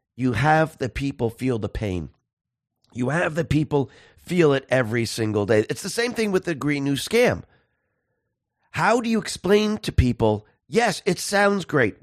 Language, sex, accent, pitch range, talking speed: English, male, American, 135-190 Hz, 175 wpm